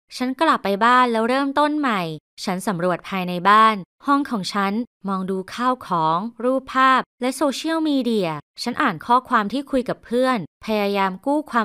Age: 20-39